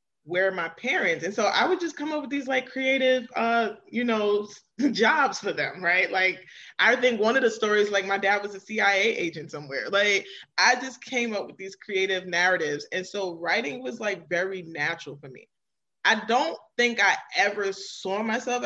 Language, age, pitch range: English, 20-39, 185-235 Hz